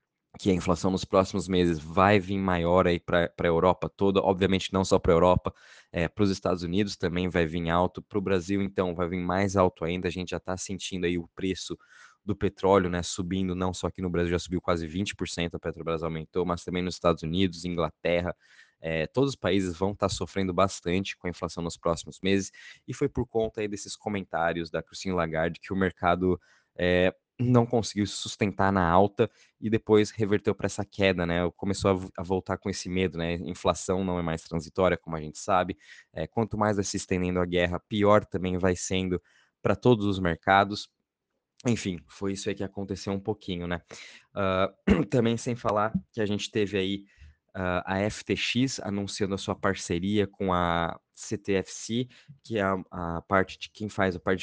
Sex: male